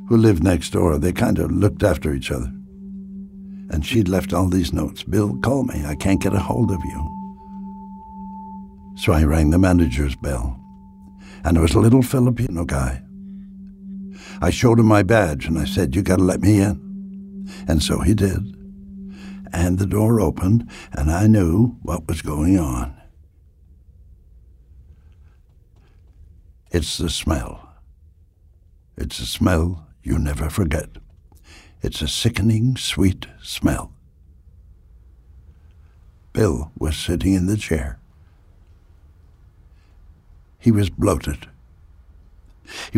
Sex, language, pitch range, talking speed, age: male, English, 80-100 Hz, 130 wpm, 60-79